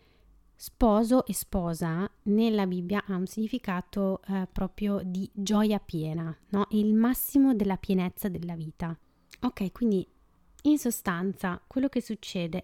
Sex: female